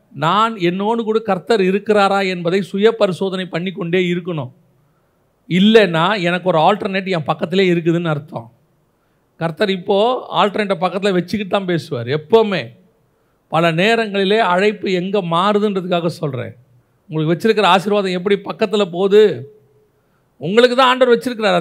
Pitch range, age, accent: 155-215 Hz, 40-59, native